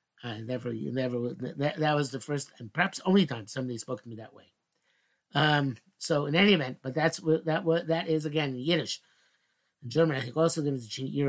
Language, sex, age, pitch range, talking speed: English, male, 50-69, 130-175 Hz, 205 wpm